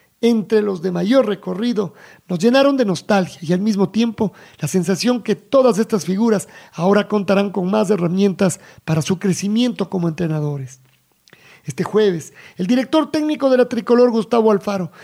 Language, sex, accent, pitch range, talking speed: Spanish, male, Mexican, 185-230 Hz, 155 wpm